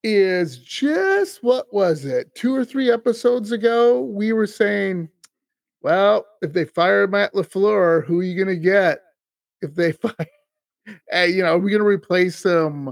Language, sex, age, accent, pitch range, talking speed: English, male, 30-49, American, 150-205 Hz, 165 wpm